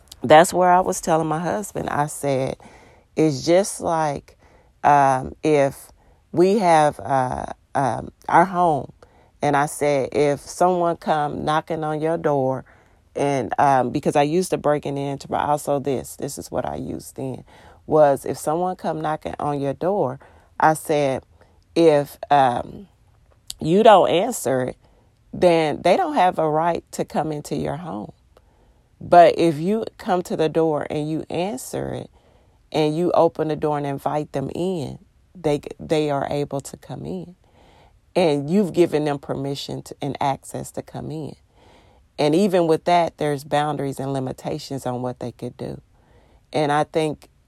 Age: 40-59